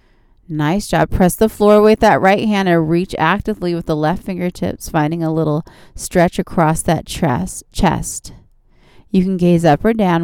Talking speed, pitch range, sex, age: 170 wpm, 160-200 Hz, female, 30-49